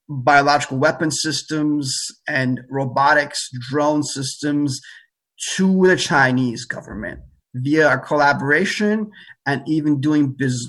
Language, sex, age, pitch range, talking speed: English, male, 30-49, 130-160 Hz, 100 wpm